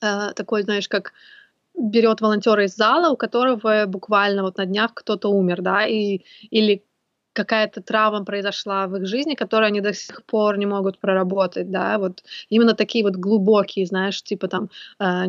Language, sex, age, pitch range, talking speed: Russian, female, 20-39, 195-225 Hz, 165 wpm